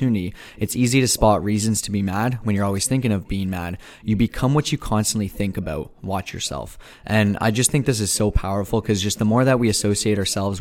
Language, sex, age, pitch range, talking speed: English, male, 20-39, 100-110 Hz, 230 wpm